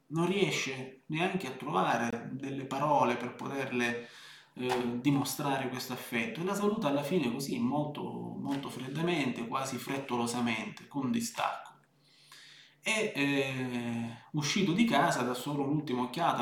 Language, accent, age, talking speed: Italian, native, 30-49, 130 wpm